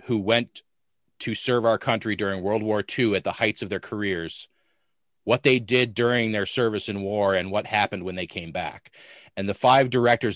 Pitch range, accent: 100-125 Hz, American